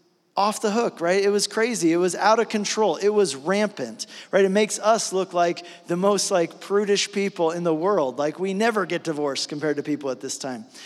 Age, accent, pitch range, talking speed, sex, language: 40-59, American, 160-200 Hz, 220 wpm, male, English